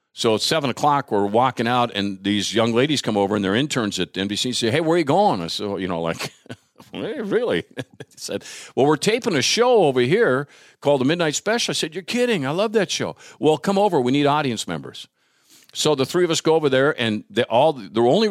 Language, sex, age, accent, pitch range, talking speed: English, male, 50-69, American, 105-145 Hz, 245 wpm